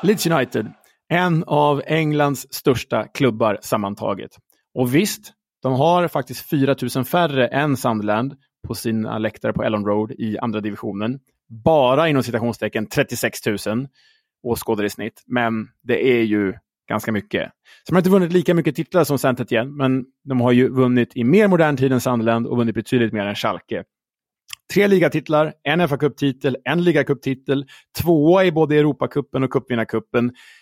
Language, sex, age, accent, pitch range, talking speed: Swedish, male, 30-49, Norwegian, 120-155 Hz, 155 wpm